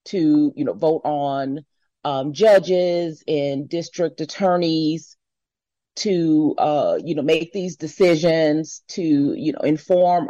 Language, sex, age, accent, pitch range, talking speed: English, female, 30-49, American, 130-155 Hz, 120 wpm